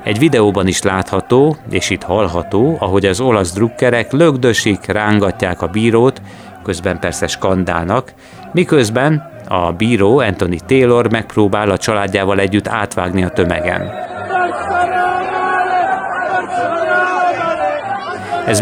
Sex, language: male, Hungarian